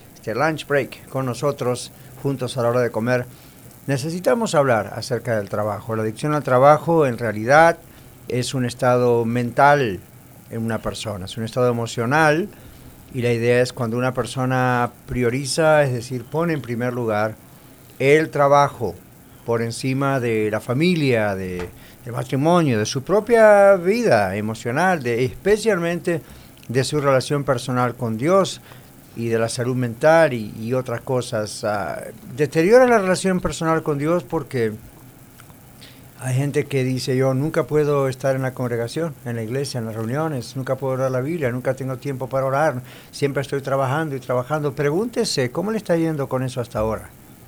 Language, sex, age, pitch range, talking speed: English, male, 50-69, 120-150 Hz, 160 wpm